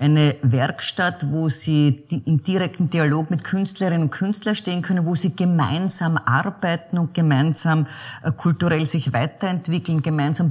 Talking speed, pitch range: 130 wpm, 145-175 Hz